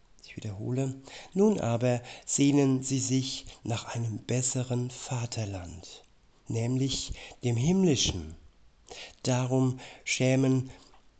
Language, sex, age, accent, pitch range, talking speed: German, male, 60-79, German, 115-130 Hz, 85 wpm